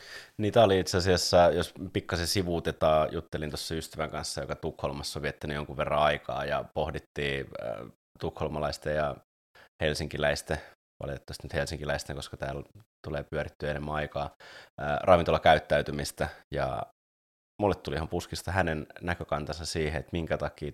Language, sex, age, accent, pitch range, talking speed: Finnish, male, 20-39, native, 70-80 Hz, 130 wpm